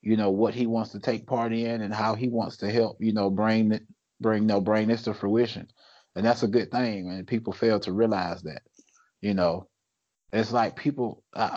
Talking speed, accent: 205 wpm, American